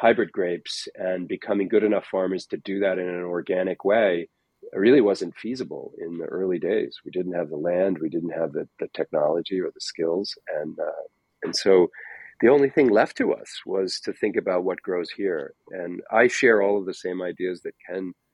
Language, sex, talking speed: English, male, 200 wpm